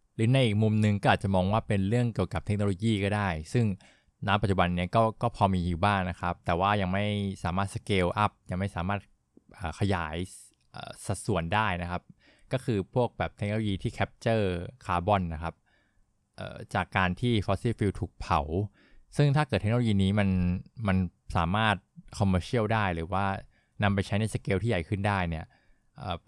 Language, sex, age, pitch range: Thai, male, 20-39, 90-110 Hz